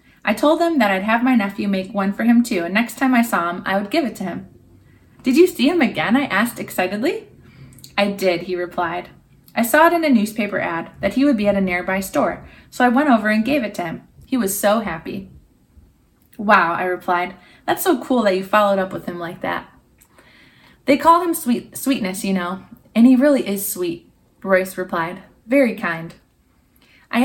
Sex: female